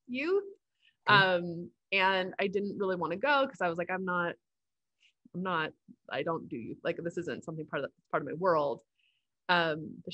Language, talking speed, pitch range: English, 195 wpm, 165-200 Hz